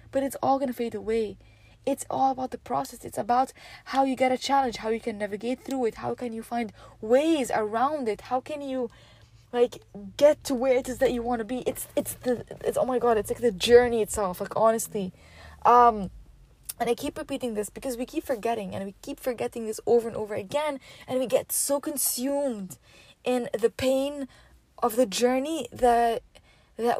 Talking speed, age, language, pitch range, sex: 205 wpm, 20-39, English, 210-260 Hz, female